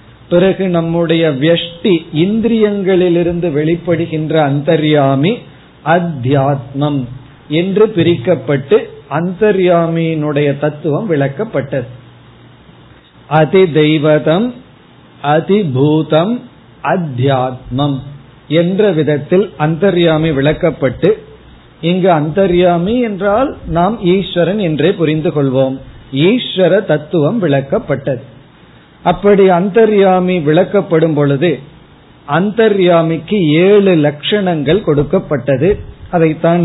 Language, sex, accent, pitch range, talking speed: Tamil, male, native, 145-185 Hz, 60 wpm